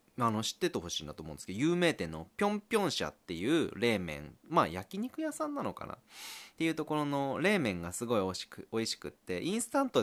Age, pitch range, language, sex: 20-39, 90-130 Hz, Japanese, male